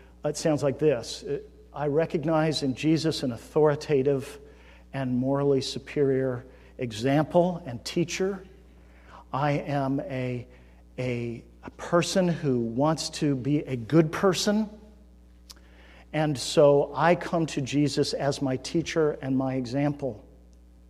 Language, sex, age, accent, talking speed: English, male, 50-69, American, 115 wpm